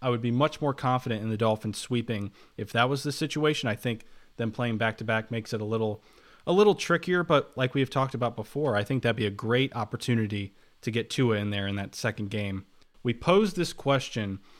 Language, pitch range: English, 115-145 Hz